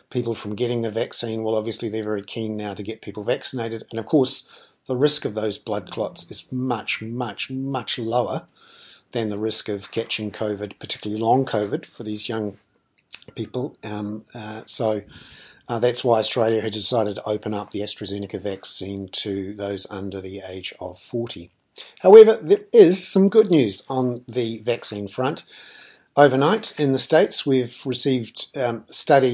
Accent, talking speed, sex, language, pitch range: Australian, 170 wpm, male, English, 105-130 Hz